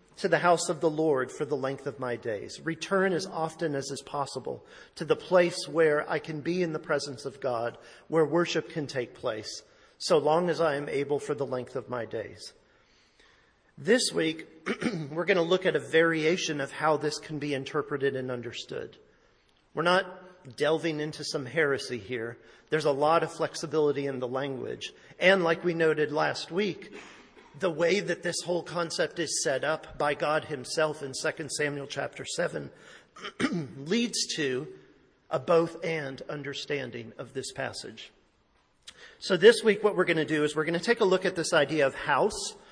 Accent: American